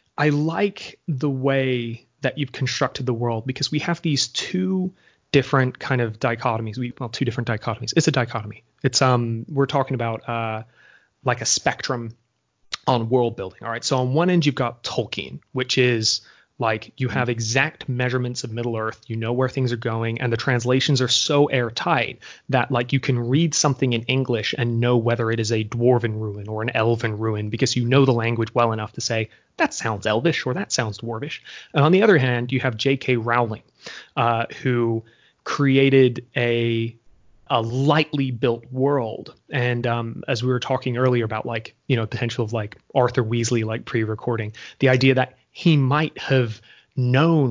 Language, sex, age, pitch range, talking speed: English, male, 30-49, 115-140 Hz, 185 wpm